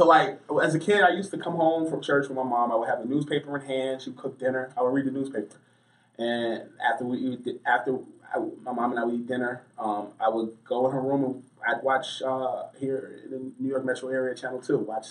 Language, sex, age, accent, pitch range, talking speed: English, male, 20-39, American, 115-135 Hz, 255 wpm